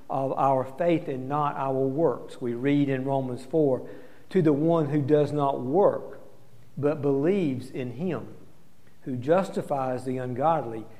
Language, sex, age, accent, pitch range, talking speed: English, male, 50-69, American, 135-160 Hz, 145 wpm